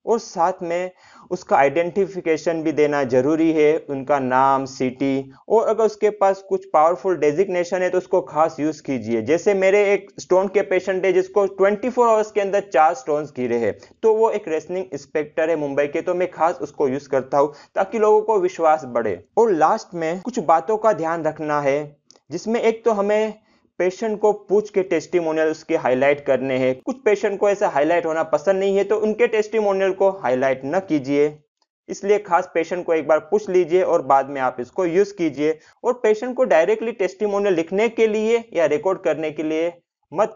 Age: 30-49